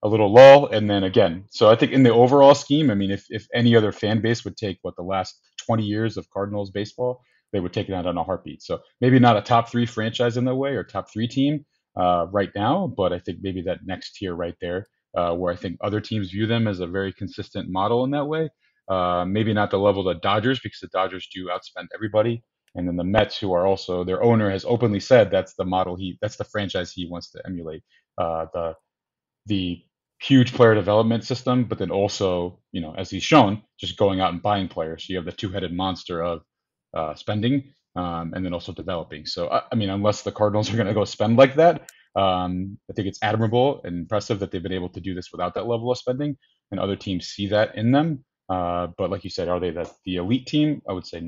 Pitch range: 90-115 Hz